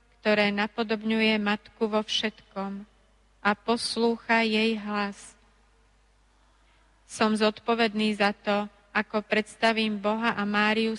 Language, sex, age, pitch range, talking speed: Slovak, female, 30-49, 200-220 Hz, 100 wpm